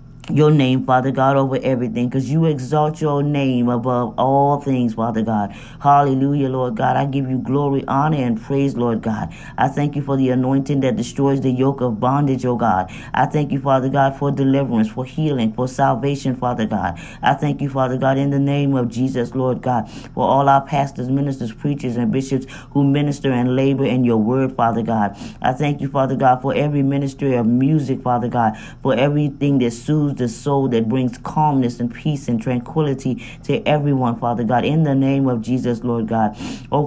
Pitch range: 125-145 Hz